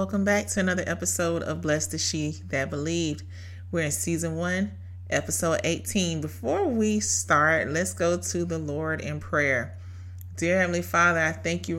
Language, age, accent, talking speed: English, 30-49, American, 170 wpm